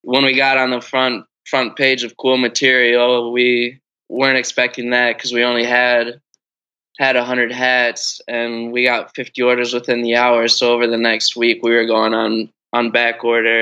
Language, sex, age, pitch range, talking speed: English, male, 10-29, 120-135 Hz, 190 wpm